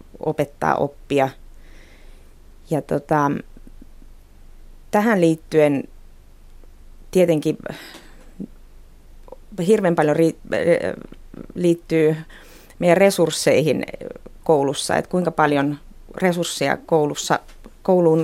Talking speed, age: 65 wpm, 30-49